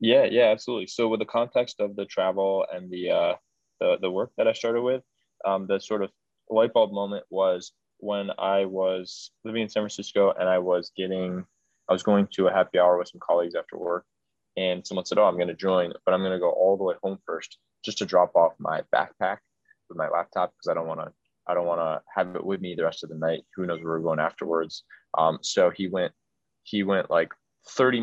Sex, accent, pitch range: male, American, 85-100 Hz